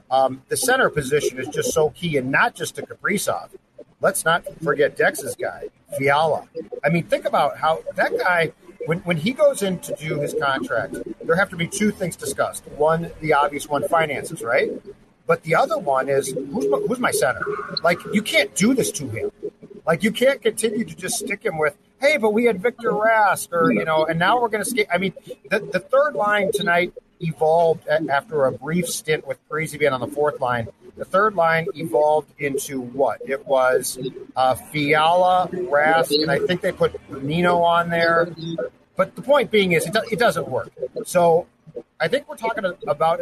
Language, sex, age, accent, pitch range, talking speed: English, male, 50-69, American, 150-220 Hz, 195 wpm